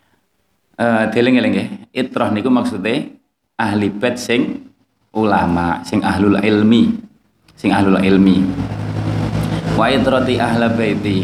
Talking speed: 110 wpm